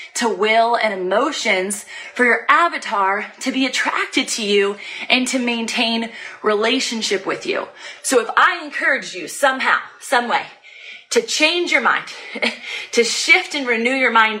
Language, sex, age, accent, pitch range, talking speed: English, female, 30-49, American, 215-290 Hz, 150 wpm